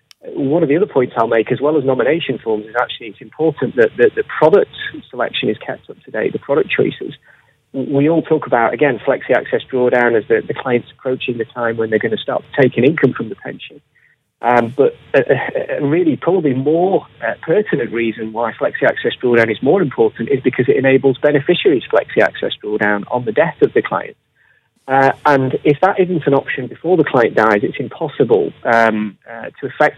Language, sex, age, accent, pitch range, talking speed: English, male, 30-49, British, 120-155 Hz, 190 wpm